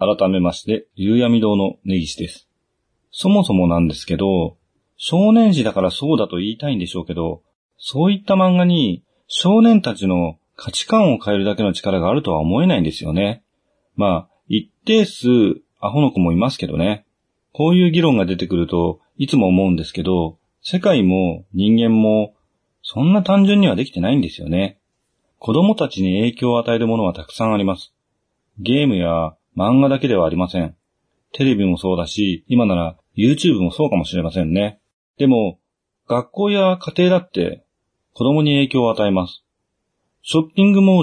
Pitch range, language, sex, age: 90-150 Hz, Japanese, male, 40-59